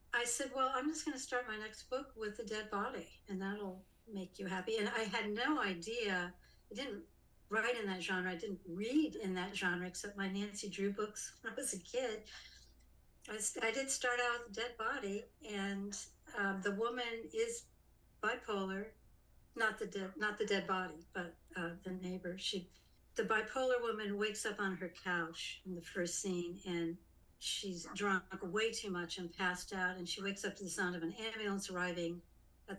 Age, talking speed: 60-79, 195 wpm